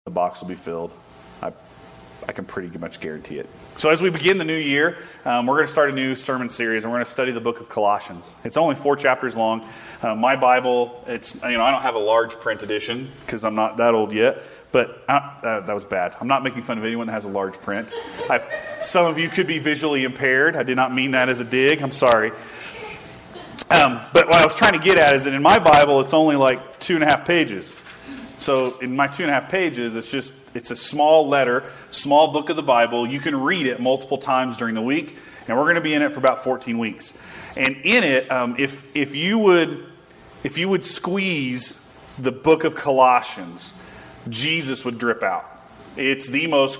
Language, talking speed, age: English, 230 wpm, 30-49